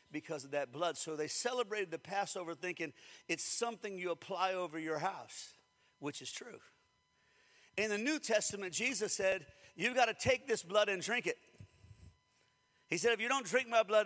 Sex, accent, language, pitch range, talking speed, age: male, American, English, 205-265 Hz, 185 wpm, 50-69